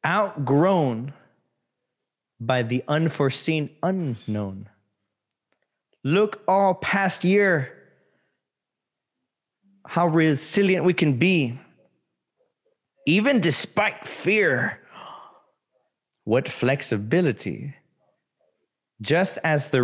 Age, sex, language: 30-49, male, English